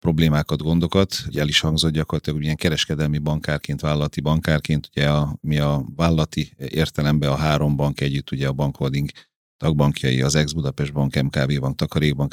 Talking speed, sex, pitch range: 155 wpm, male, 70-80 Hz